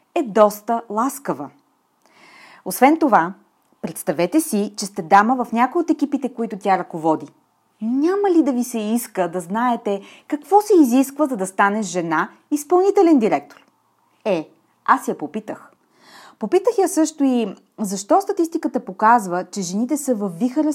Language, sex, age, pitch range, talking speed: Bulgarian, female, 30-49, 195-265 Hz, 145 wpm